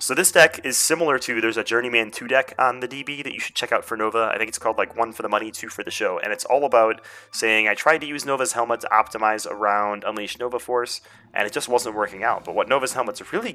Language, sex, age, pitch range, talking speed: English, male, 30-49, 105-130 Hz, 275 wpm